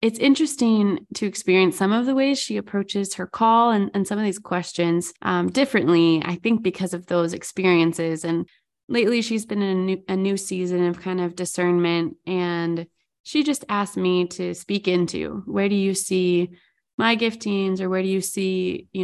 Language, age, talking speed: English, 20-39, 185 wpm